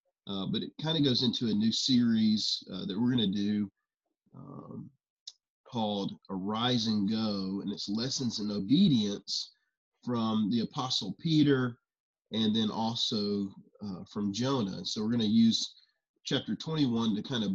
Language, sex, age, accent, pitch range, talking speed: English, male, 30-49, American, 100-145 Hz, 155 wpm